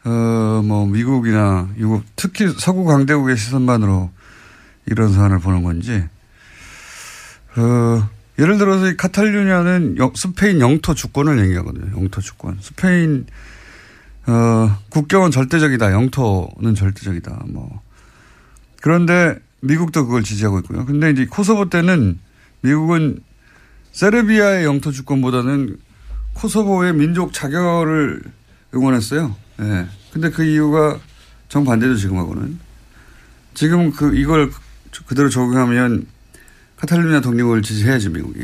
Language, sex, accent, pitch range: Korean, male, native, 105-150 Hz